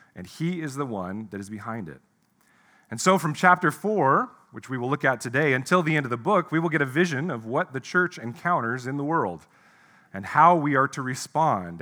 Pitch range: 115-160 Hz